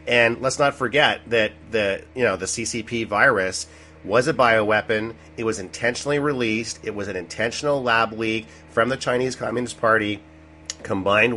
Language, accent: English, American